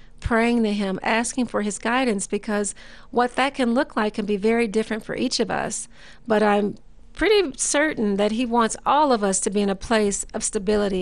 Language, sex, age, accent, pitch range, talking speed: English, female, 40-59, American, 205-245 Hz, 205 wpm